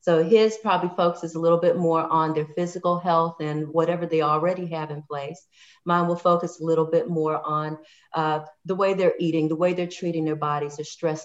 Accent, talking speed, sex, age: American, 215 wpm, female, 40-59